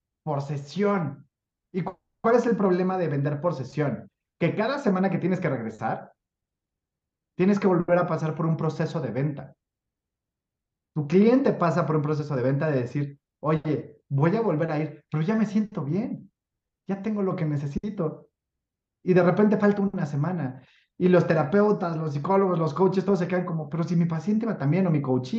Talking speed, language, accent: 190 wpm, Spanish, Mexican